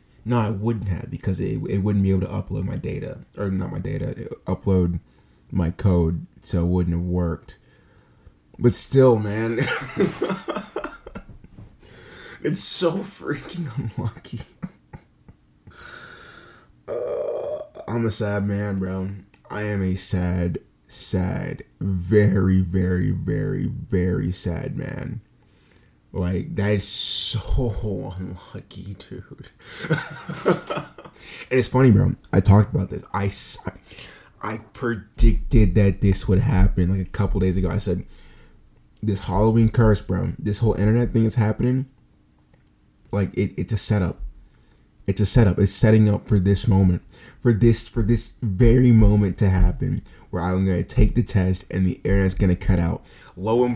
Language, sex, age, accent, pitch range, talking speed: English, male, 20-39, American, 95-115 Hz, 140 wpm